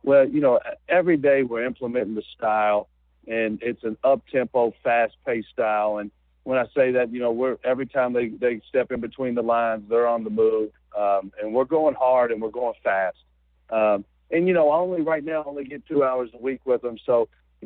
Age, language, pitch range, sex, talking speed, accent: 50-69, English, 115-140 Hz, male, 220 wpm, American